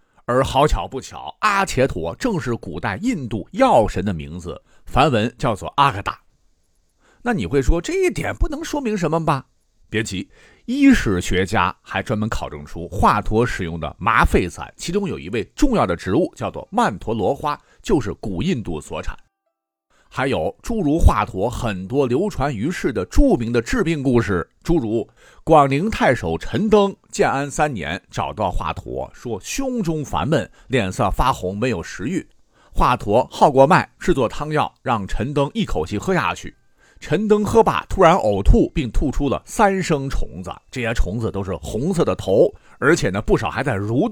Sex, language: male, Chinese